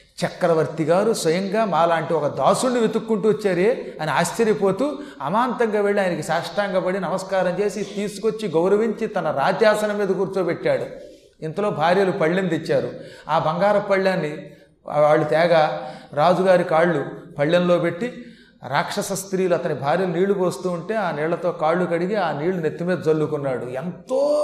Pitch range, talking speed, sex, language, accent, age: 170-235 Hz, 125 wpm, male, Telugu, native, 30-49